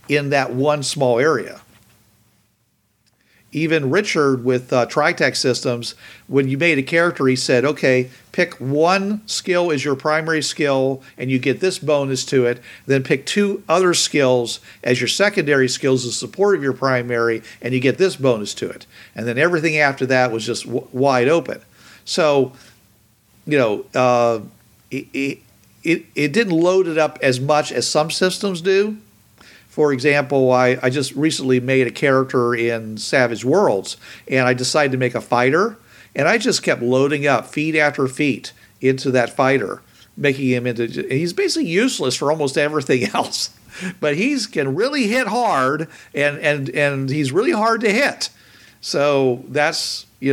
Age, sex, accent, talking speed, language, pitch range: 50-69, male, American, 165 wpm, English, 125-155 Hz